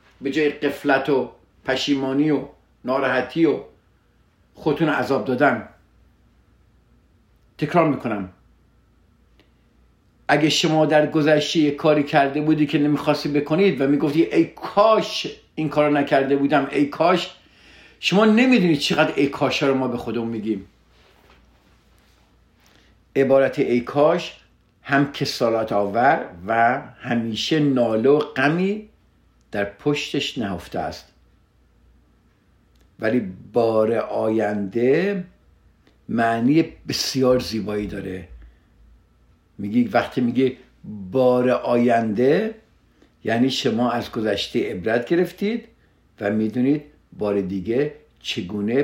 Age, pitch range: 50-69, 110-150 Hz